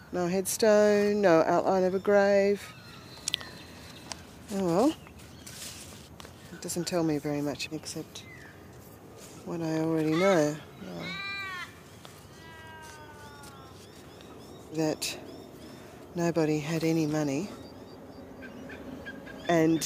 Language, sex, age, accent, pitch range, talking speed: English, female, 40-59, Australian, 145-170 Hz, 80 wpm